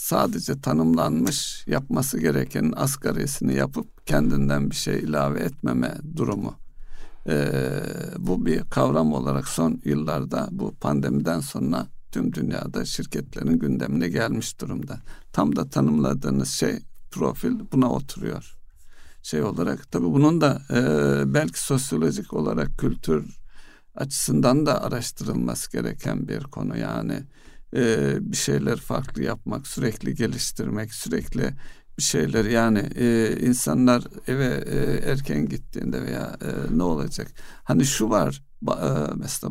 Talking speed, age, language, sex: 120 wpm, 60-79, Turkish, male